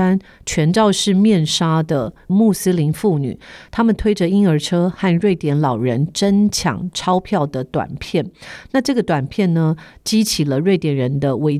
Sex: female